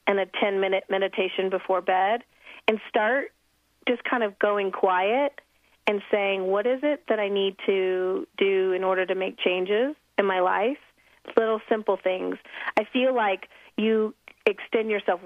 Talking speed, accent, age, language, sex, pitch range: 155 wpm, American, 30-49, English, female, 195-245 Hz